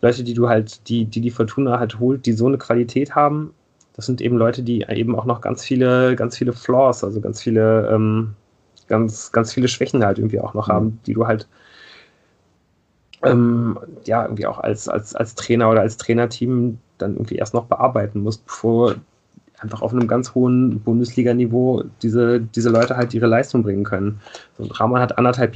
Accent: German